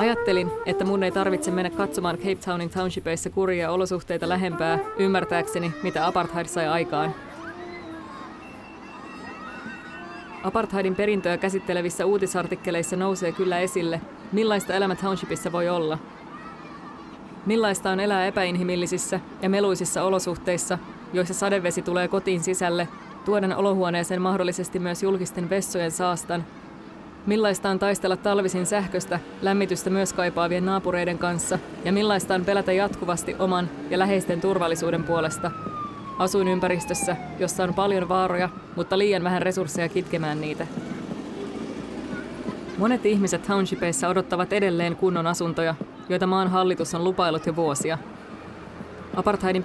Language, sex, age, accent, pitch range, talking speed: Finnish, female, 20-39, native, 175-195 Hz, 115 wpm